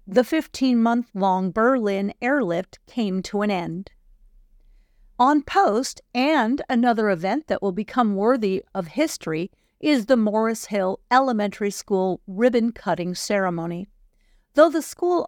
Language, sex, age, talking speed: English, female, 50-69, 120 wpm